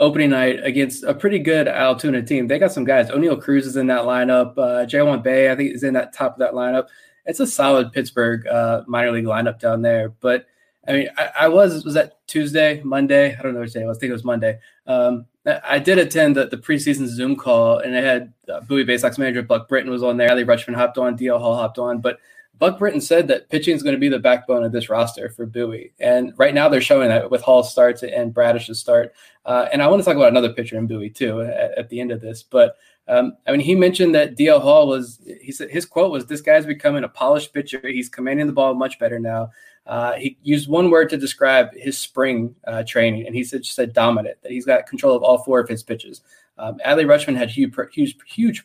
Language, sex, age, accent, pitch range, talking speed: English, male, 20-39, American, 120-185 Hz, 250 wpm